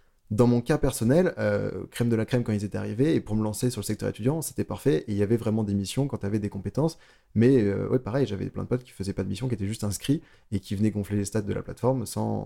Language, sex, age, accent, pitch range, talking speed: French, male, 20-39, French, 105-130 Hz, 305 wpm